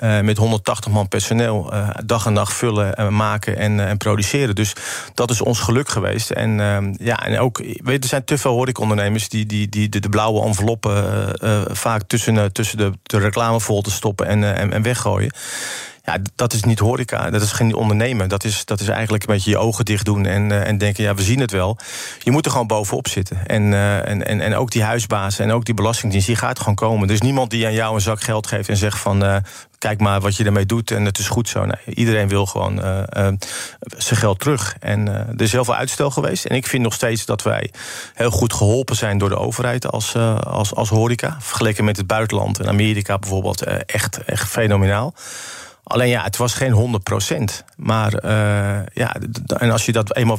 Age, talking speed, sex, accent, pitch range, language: 40-59, 230 wpm, male, Dutch, 105-115 Hz, Dutch